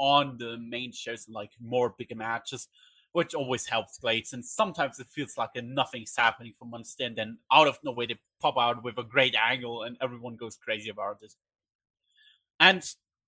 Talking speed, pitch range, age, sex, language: 185 wpm, 125-180 Hz, 20-39, male, English